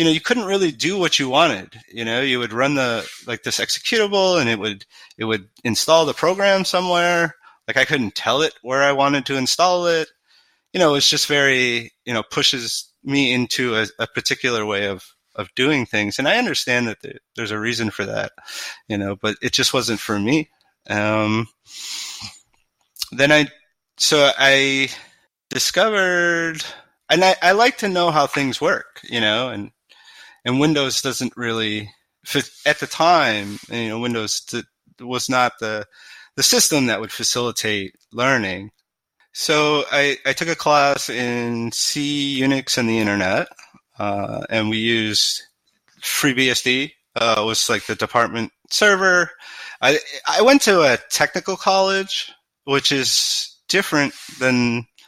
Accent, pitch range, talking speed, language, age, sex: American, 110-155 Hz, 160 wpm, English, 30-49, male